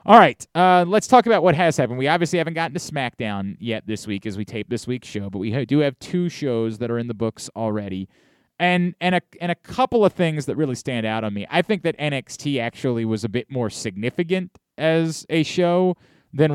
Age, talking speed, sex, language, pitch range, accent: 30-49, 230 wpm, male, English, 125-180 Hz, American